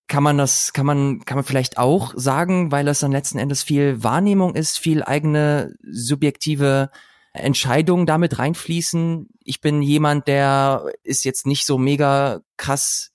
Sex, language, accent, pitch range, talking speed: male, German, German, 120-150 Hz, 155 wpm